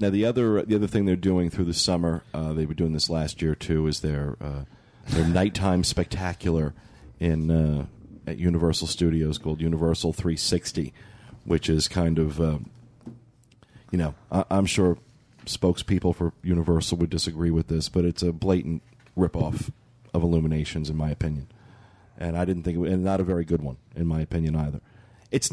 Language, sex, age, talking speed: English, male, 40-59, 180 wpm